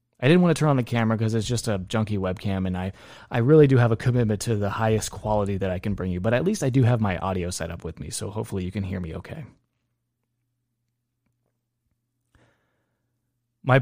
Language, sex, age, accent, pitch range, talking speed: English, male, 30-49, American, 105-125 Hz, 220 wpm